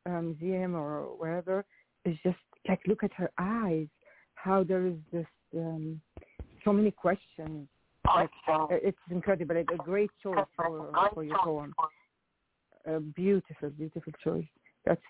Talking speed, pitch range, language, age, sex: 135 wpm, 160-190 Hz, English, 50-69, female